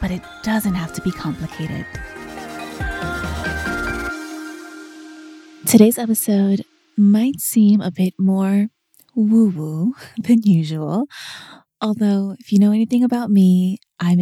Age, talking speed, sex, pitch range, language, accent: 20-39, 110 wpm, female, 170-225 Hz, English, American